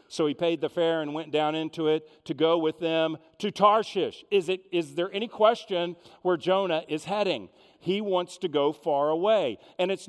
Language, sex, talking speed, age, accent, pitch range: English, male, 200 wpm, 50-69, American, 135-190 Hz